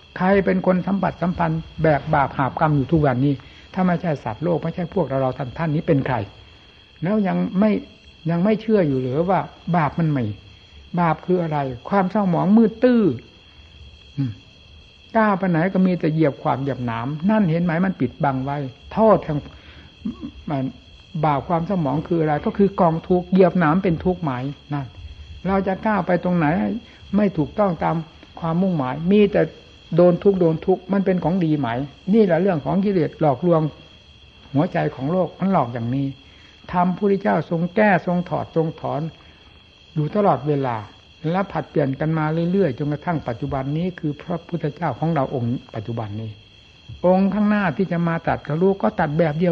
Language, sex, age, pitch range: Thai, male, 60-79, 135-185 Hz